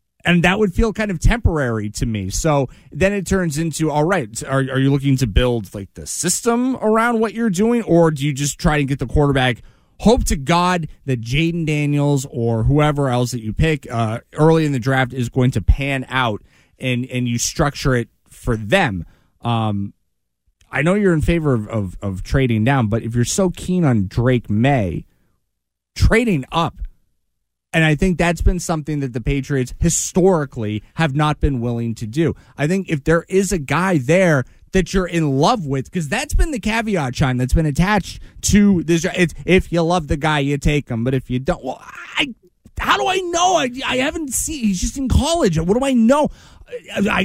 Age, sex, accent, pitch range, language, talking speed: 30-49, male, American, 125-195 Hz, English, 205 wpm